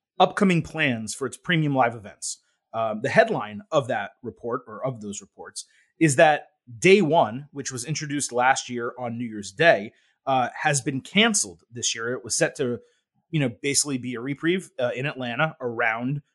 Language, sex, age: English, male, 30-49